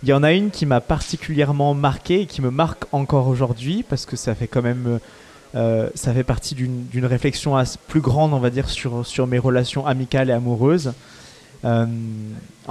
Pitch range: 125-150 Hz